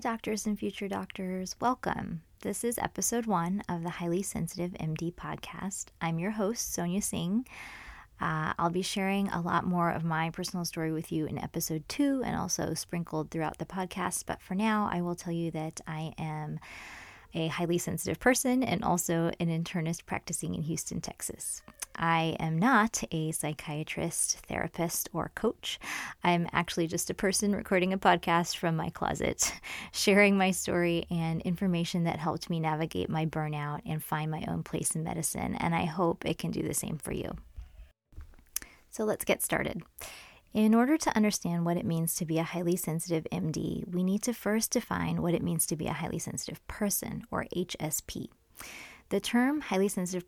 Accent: American